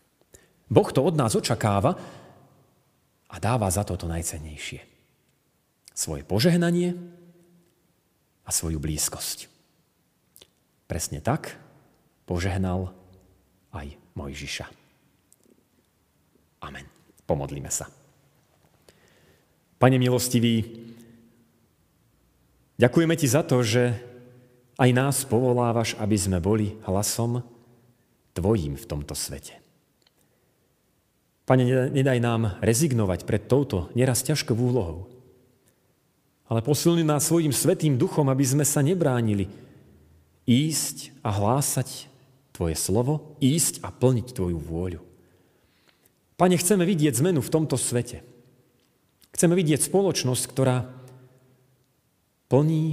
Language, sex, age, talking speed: Slovak, male, 40-59, 95 wpm